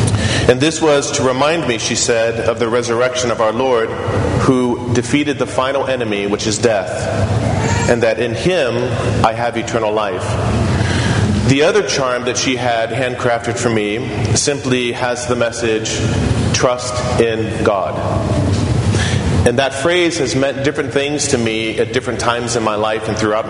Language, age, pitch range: English, 40-59, 110-130 Hz